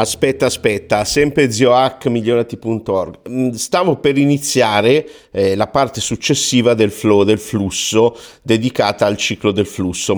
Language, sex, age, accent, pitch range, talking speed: Italian, male, 50-69, native, 95-130 Hz, 120 wpm